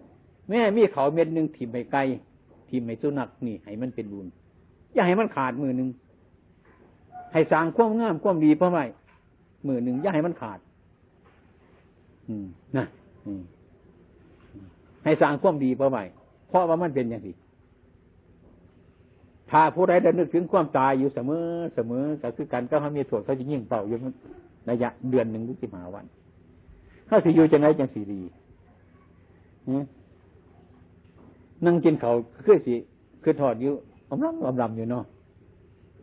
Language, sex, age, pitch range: Thai, male, 60-79, 95-150 Hz